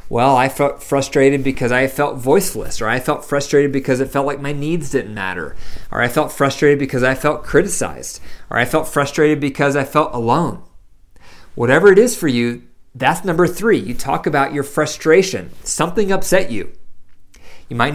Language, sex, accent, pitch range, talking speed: English, male, American, 120-165 Hz, 180 wpm